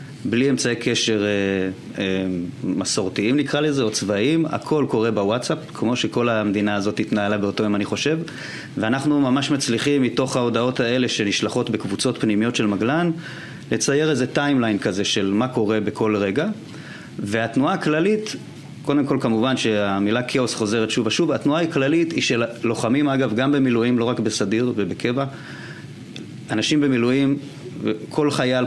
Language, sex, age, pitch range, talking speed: Hebrew, male, 30-49, 110-145 Hz, 140 wpm